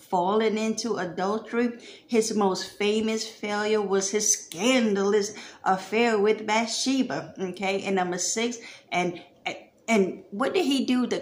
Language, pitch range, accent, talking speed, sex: English, 195-230 Hz, American, 130 wpm, female